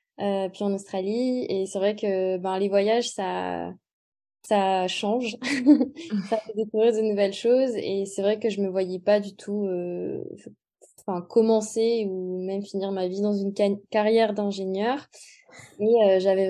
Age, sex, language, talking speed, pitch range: 20-39, female, French, 160 wpm, 195-220 Hz